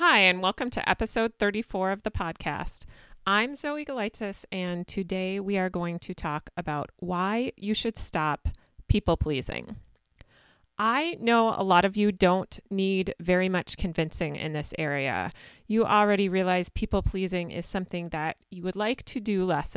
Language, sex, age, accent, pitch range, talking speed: English, female, 30-49, American, 170-220 Hz, 160 wpm